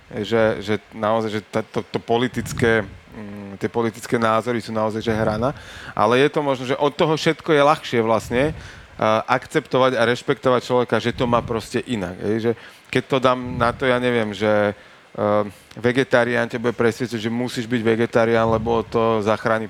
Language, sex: Slovak, male